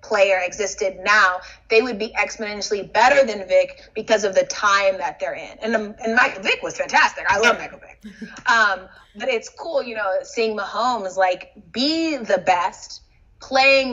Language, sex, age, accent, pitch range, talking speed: English, female, 20-39, American, 195-260 Hz, 170 wpm